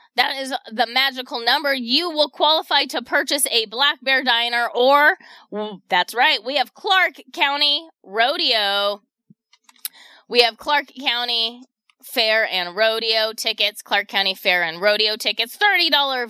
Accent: American